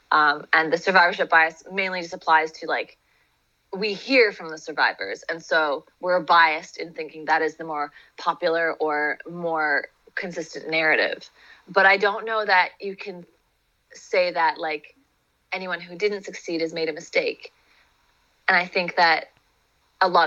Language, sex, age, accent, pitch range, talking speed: English, female, 20-39, American, 165-215 Hz, 160 wpm